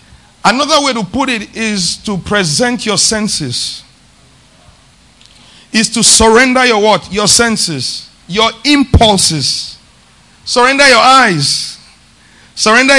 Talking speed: 105 wpm